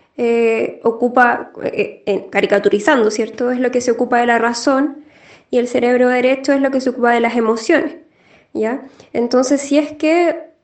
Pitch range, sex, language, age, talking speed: 235-275 Hz, female, Spanish, 10-29, 175 wpm